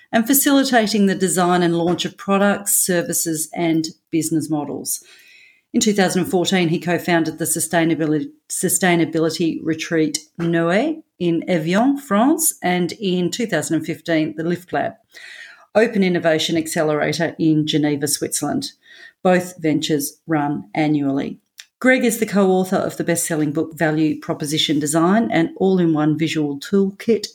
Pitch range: 155-200 Hz